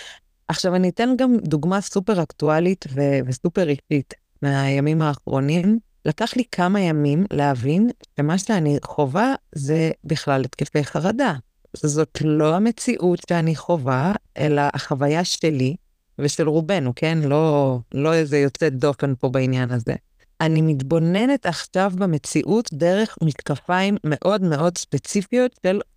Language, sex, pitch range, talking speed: Hebrew, female, 145-200 Hz, 115 wpm